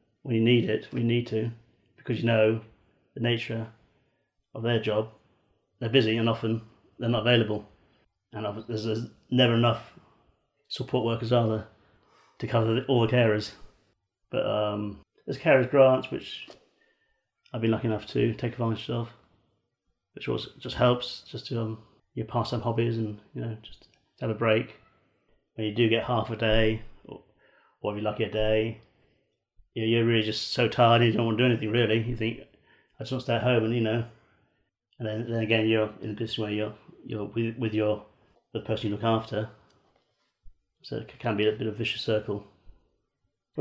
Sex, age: male, 40-59